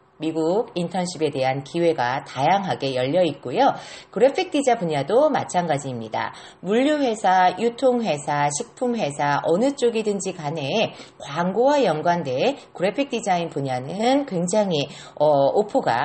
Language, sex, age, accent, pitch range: Korean, female, 40-59, native, 155-230 Hz